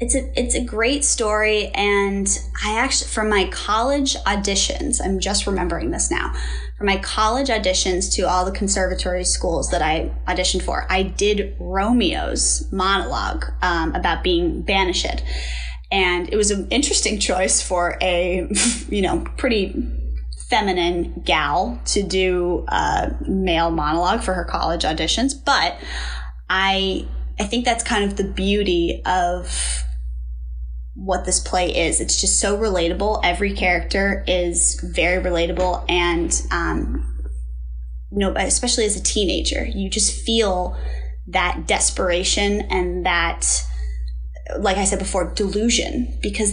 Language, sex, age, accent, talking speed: English, female, 10-29, American, 135 wpm